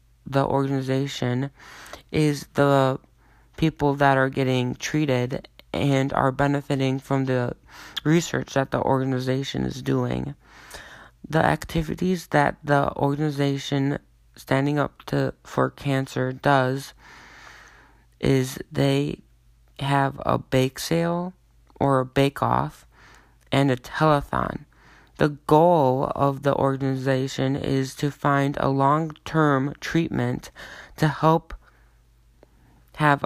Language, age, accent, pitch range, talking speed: English, 20-39, American, 120-145 Hz, 105 wpm